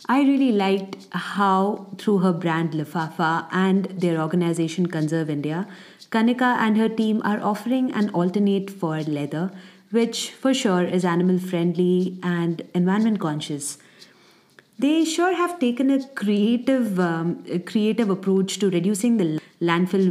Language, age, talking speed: English, 30-49, 130 wpm